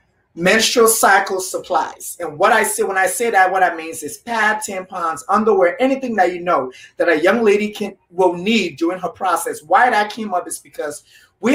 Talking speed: 205 wpm